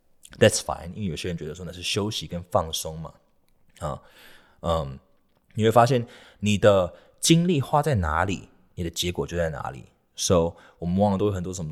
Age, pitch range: 20-39, 85-110 Hz